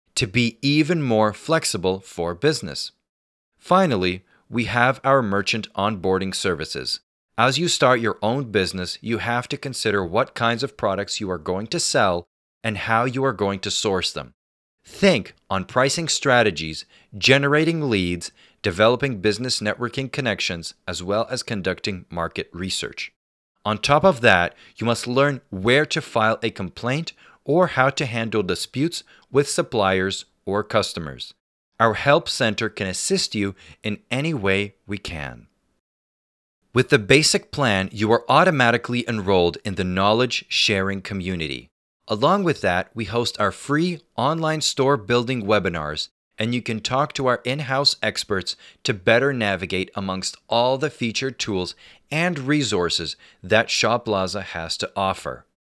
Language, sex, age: English, male, 40-59